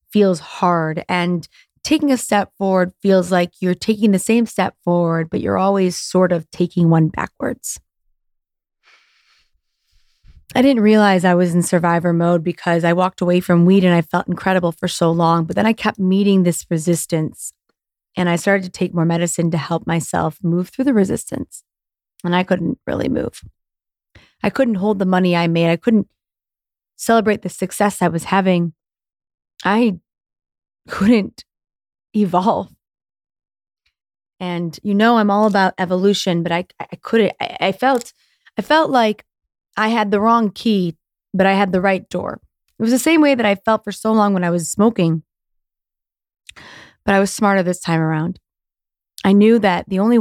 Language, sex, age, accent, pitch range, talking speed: English, female, 30-49, American, 175-210 Hz, 170 wpm